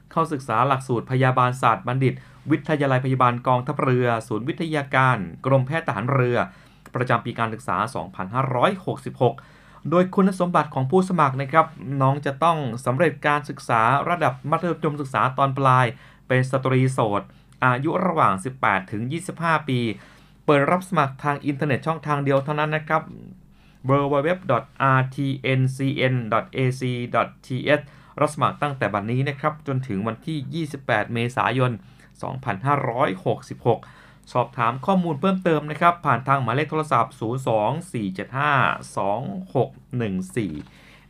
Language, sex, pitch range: Thai, male, 120-150 Hz